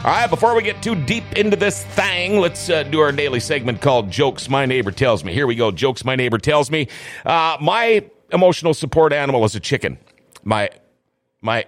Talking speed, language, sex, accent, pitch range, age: 205 wpm, English, male, American, 115-150 Hz, 40-59